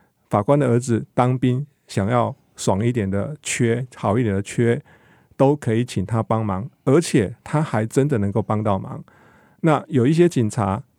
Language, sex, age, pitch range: Chinese, male, 50-69, 110-135 Hz